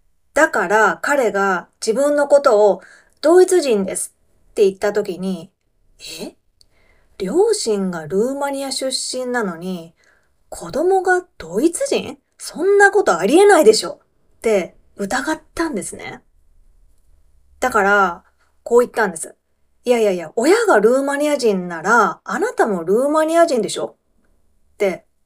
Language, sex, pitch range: Japanese, female, 170-275 Hz